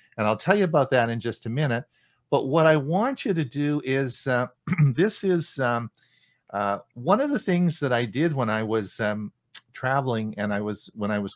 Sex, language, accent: male, English, American